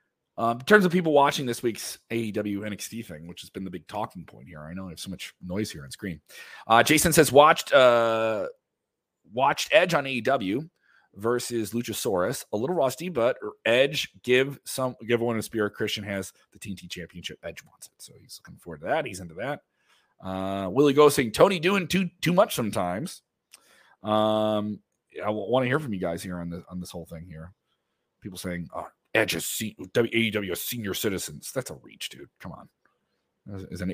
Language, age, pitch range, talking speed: English, 30-49, 100-140 Hz, 195 wpm